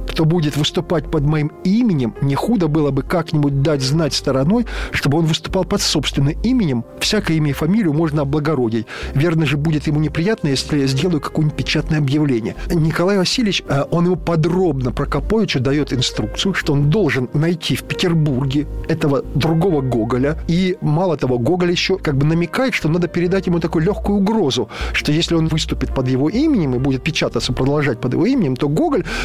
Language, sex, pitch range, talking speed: Russian, male, 140-175 Hz, 175 wpm